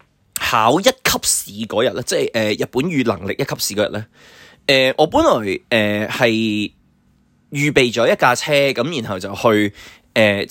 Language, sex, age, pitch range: Chinese, male, 20-39, 110-155 Hz